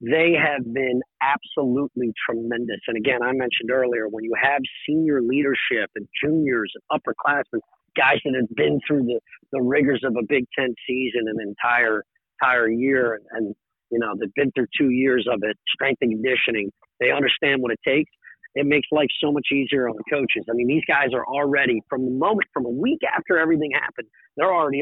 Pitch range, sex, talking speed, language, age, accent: 125-155 Hz, male, 195 wpm, English, 40-59, American